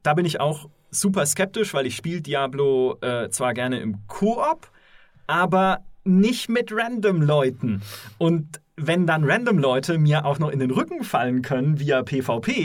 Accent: German